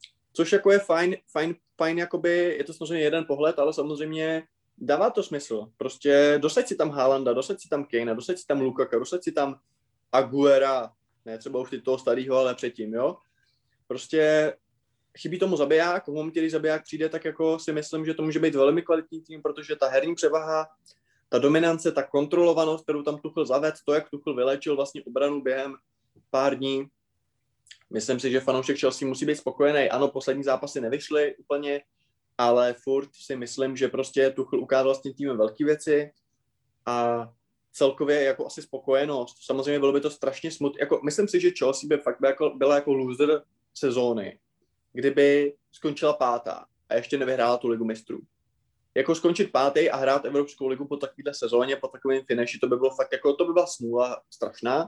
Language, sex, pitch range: Czech, male, 130-155 Hz